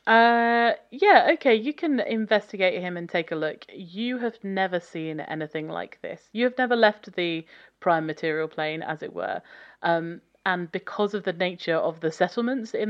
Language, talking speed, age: English, 180 wpm, 30-49